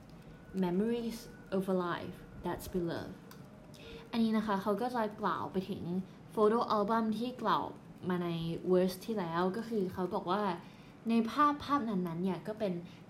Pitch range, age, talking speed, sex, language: 175-215 Hz, 20-39, 55 wpm, female, English